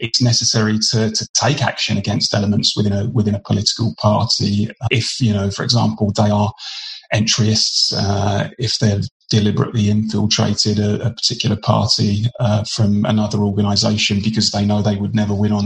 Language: English